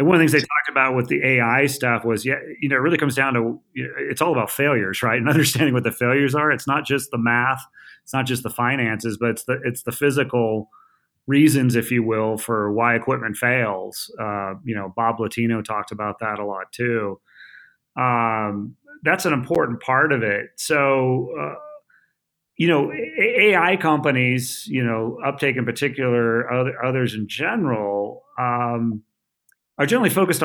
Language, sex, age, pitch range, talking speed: English, male, 30-49, 115-145 Hz, 185 wpm